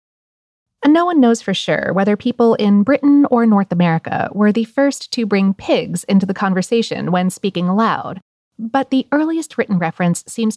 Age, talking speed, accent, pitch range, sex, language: 30-49, 175 wpm, American, 180-245 Hz, female, English